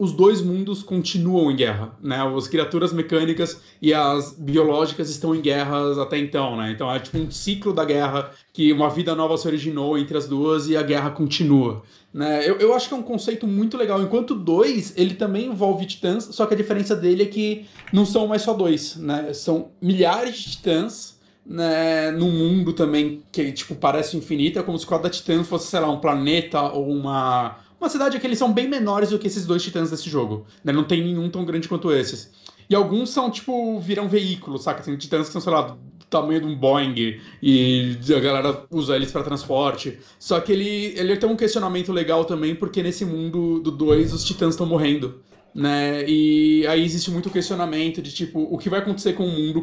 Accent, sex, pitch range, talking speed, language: Brazilian, male, 145-190 Hz, 210 wpm, Portuguese